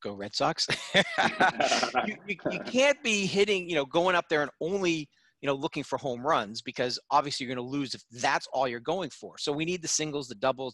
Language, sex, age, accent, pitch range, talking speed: English, male, 40-59, American, 130-170 Hz, 230 wpm